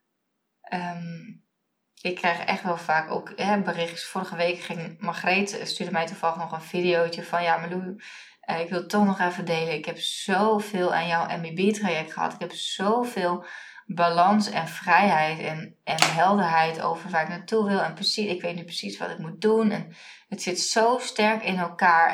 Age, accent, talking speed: 20-39, Dutch, 185 wpm